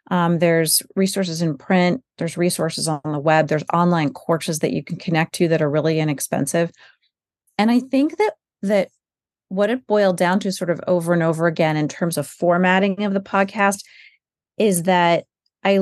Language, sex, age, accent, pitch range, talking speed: English, female, 30-49, American, 165-200 Hz, 180 wpm